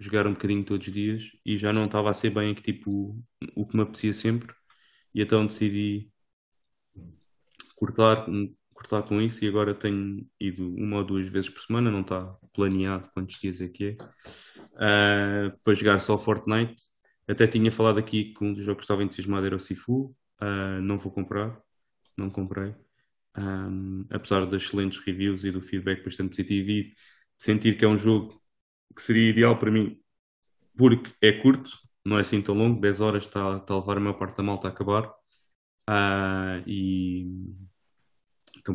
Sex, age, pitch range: male, 20-39, 95-110 Hz